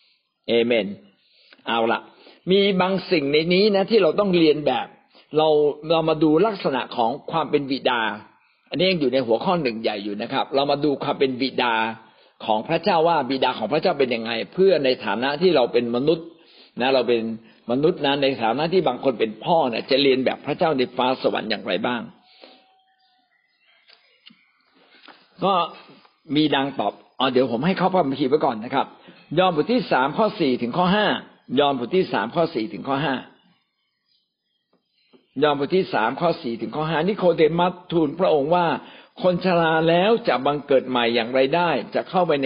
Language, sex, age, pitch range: Thai, male, 60-79, 125-175 Hz